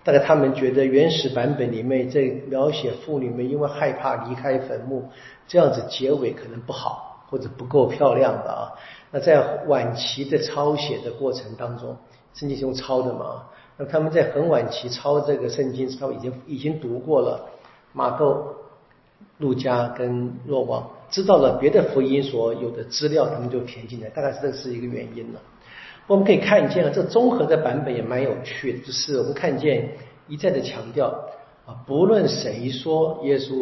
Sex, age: male, 50-69